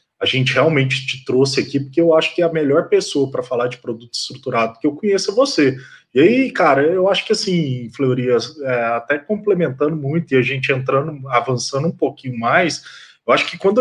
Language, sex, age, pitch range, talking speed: Portuguese, male, 20-39, 135-180 Hz, 205 wpm